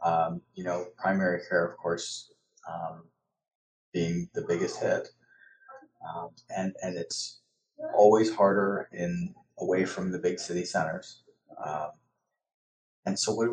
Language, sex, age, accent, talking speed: English, male, 30-49, American, 135 wpm